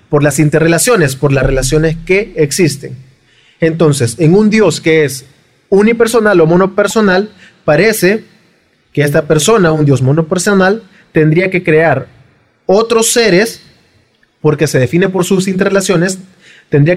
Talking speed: 125 wpm